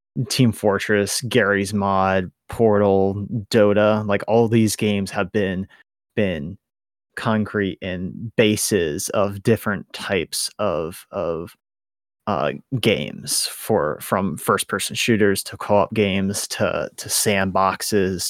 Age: 30-49